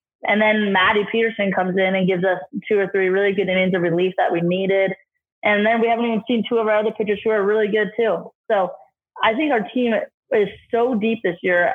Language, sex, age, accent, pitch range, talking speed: English, female, 20-39, American, 185-215 Hz, 235 wpm